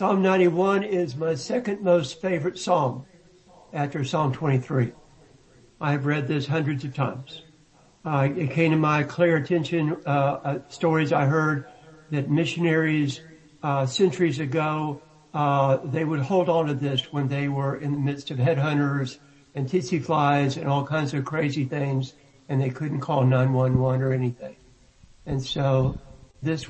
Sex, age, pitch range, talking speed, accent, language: male, 60-79, 140-175 Hz, 155 wpm, American, English